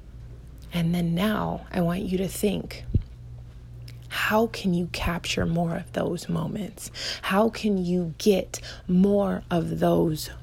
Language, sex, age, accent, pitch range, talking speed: English, female, 20-39, American, 165-200 Hz, 130 wpm